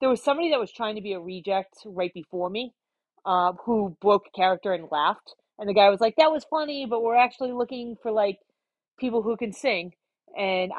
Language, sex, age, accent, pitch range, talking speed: English, female, 30-49, American, 175-215 Hz, 210 wpm